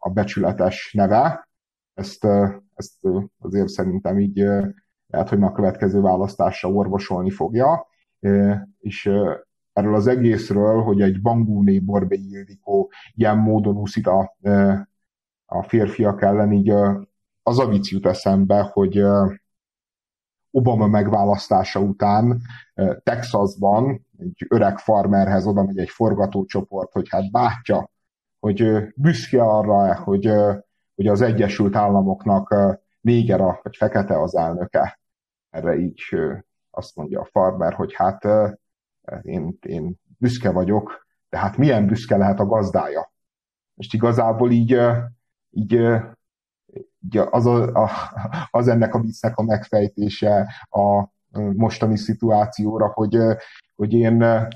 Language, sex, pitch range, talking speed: Hungarian, male, 100-115 Hz, 115 wpm